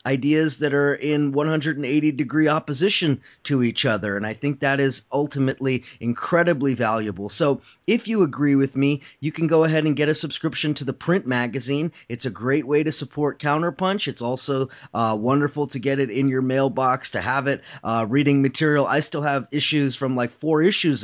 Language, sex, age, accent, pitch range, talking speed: English, male, 30-49, American, 120-150 Hz, 190 wpm